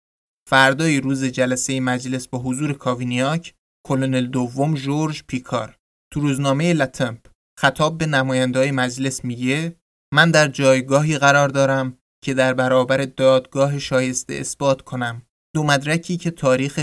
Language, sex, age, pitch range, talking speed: Persian, male, 20-39, 125-145 Hz, 125 wpm